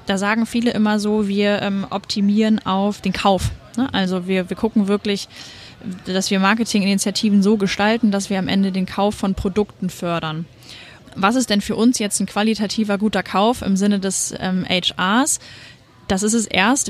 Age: 20-39